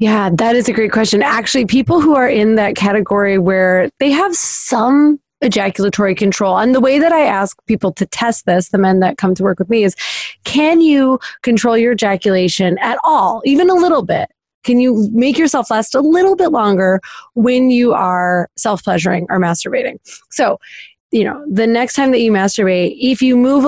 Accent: American